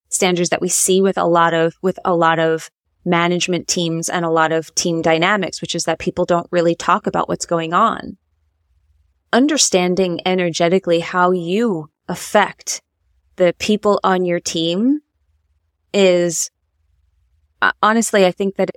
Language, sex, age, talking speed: English, female, 20-39, 145 wpm